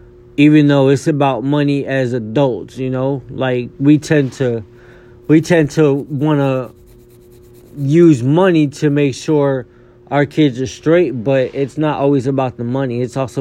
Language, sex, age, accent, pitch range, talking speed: English, male, 20-39, American, 120-140 Hz, 160 wpm